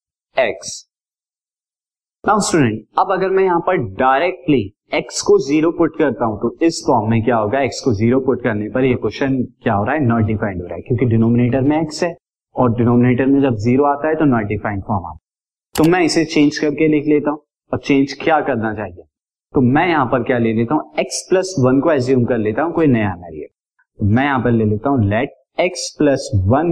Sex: male